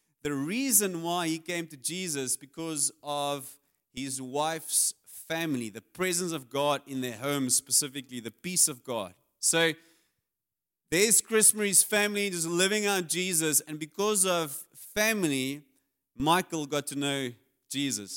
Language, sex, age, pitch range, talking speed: English, male, 30-49, 125-160 Hz, 140 wpm